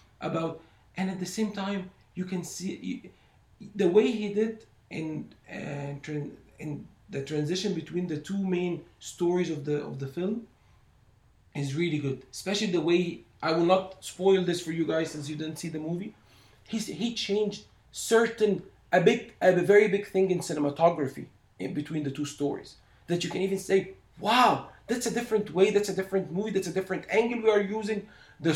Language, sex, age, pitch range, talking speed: English, male, 40-59, 155-205 Hz, 185 wpm